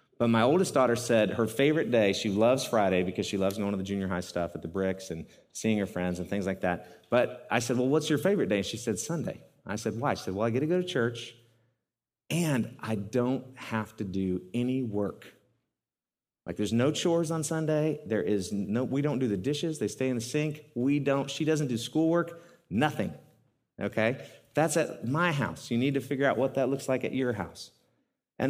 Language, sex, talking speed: English, male, 225 wpm